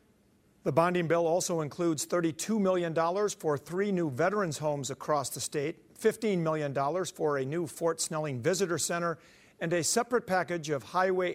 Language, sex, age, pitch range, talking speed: English, male, 50-69, 150-180 Hz, 160 wpm